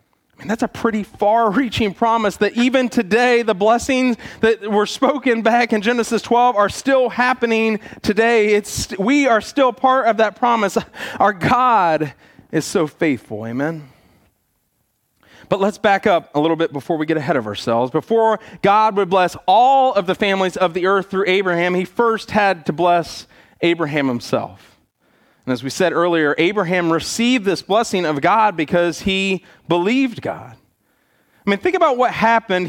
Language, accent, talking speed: English, American, 165 wpm